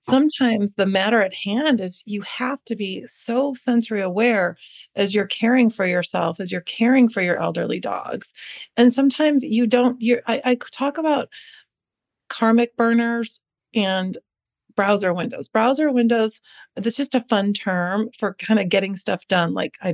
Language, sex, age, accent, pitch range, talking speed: English, female, 40-59, American, 195-250 Hz, 165 wpm